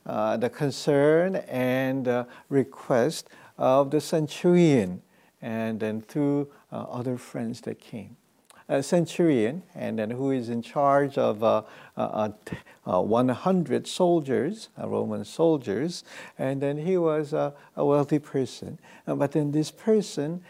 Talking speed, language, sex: 140 wpm, English, male